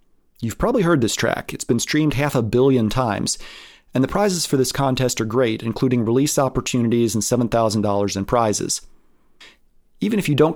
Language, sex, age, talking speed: English, male, 40-59, 175 wpm